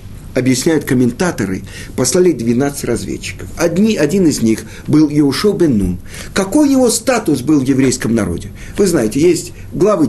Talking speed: 130 wpm